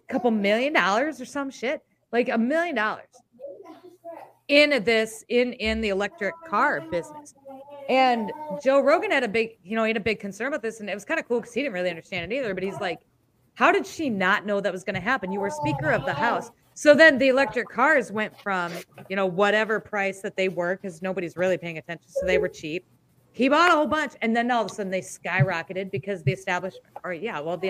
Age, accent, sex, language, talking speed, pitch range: 30-49, American, female, English, 235 wpm, 180-265 Hz